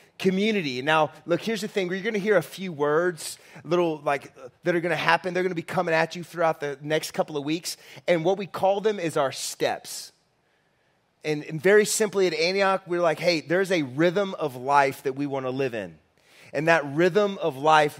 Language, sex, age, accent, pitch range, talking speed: English, male, 30-49, American, 150-185 Hz, 220 wpm